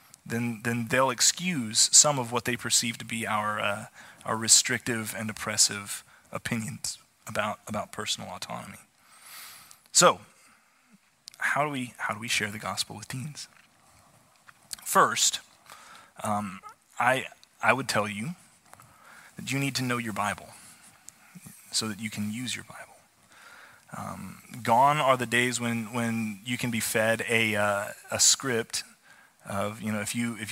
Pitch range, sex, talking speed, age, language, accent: 110-125 Hz, male, 150 wpm, 20-39, English, American